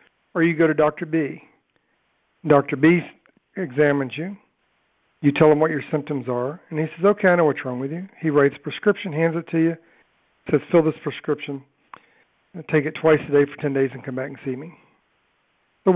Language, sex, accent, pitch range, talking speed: English, male, American, 140-165 Hz, 205 wpm